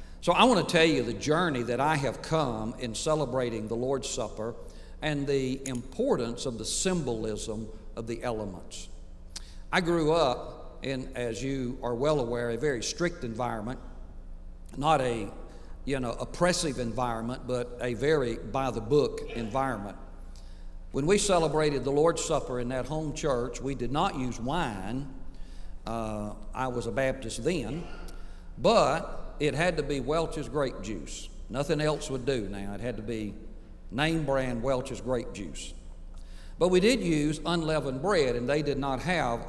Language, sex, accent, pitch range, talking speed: English, male, American, 115-150 Hz, 160 wpm